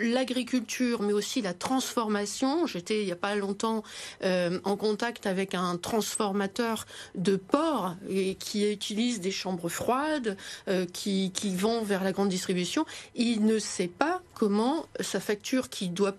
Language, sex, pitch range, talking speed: French, female, 200-250 Hz, 150 wpm